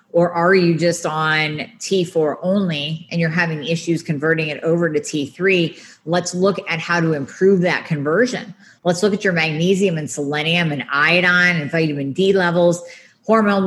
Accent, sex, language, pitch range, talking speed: American, female, English, 155-190 Hz, 165 wpm